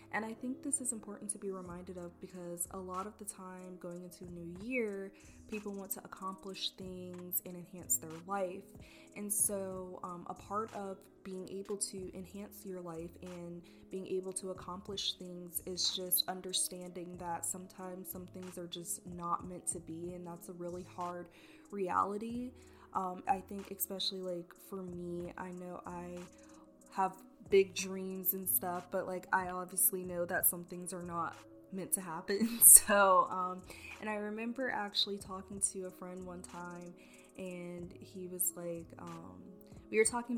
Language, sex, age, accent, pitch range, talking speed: English, female, 20-39, American, 175-195 Hz, 170 wpm